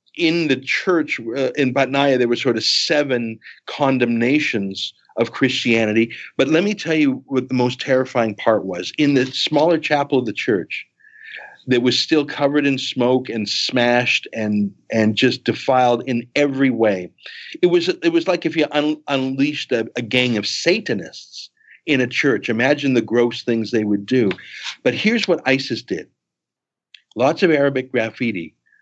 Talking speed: 160 wpm